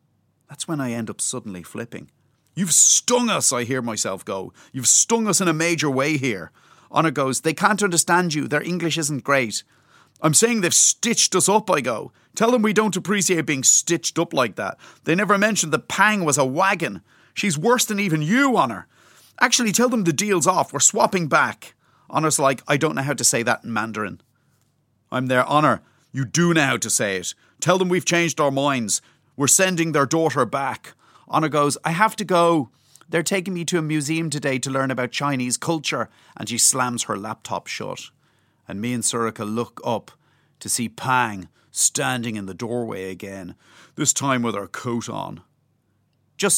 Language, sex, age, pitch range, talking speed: English, male, 30-49, 125-170 Hz, 195 wpm